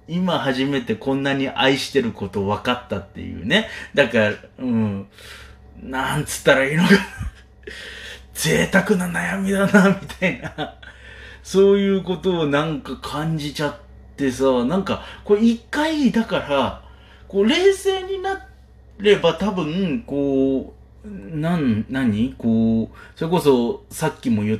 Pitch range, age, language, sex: 110-180 Hz, 40-59, Japanese, male